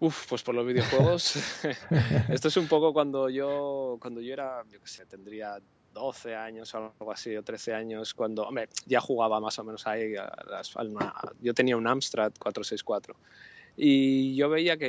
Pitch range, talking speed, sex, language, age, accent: 110-125 Hz, 190 wpm, male, Spanish, 20-39, Spanish